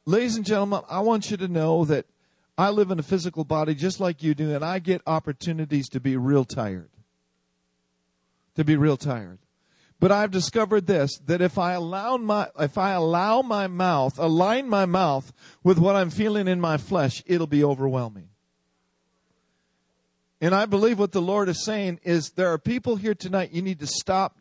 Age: 50-69